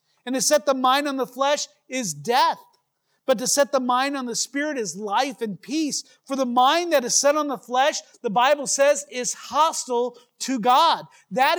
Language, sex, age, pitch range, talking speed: English, male, 40-59, 205-265 Hz, 200 wpm